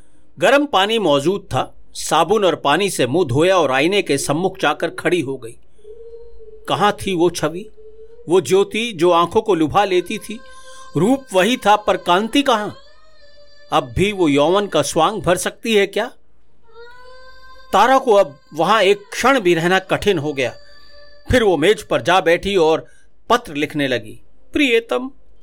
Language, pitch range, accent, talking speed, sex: Hindi, 200-285 Hz, native, 160 wpm, male